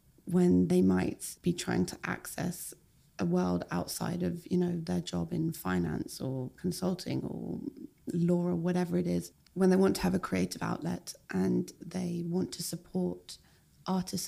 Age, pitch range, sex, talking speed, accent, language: 20-39, 165-185 Hz, female, 165 wpm, British, English